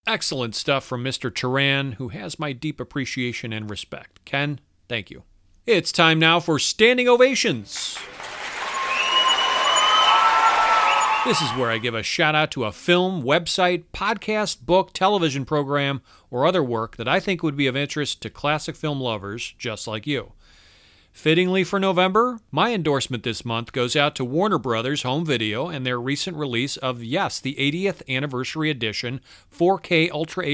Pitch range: 115-160 Hz